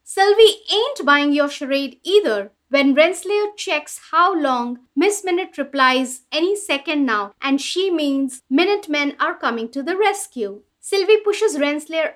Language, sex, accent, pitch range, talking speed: English, female, Indian, 255-355 Hz, 145 wpm